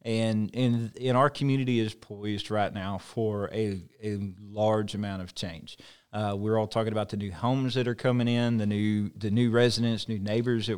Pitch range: 105-120 Hz